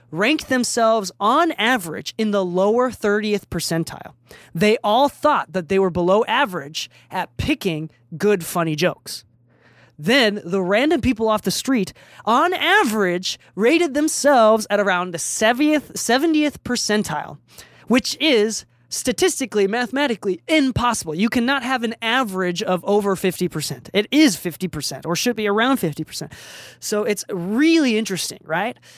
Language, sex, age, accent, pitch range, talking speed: English, male, 20-39, American, 180-245 Hz, 135 wpm